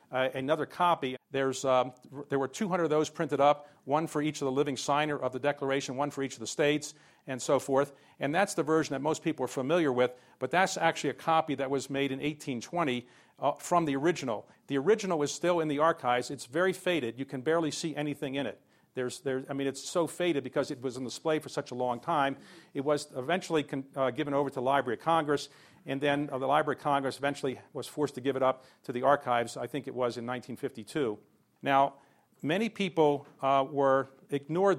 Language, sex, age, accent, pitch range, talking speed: English, male, 50-69, American, 130-155 Hz, 225 wpm